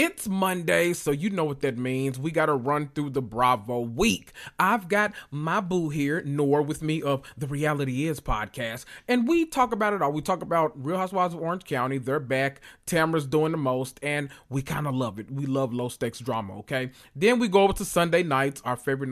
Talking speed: 215 wpm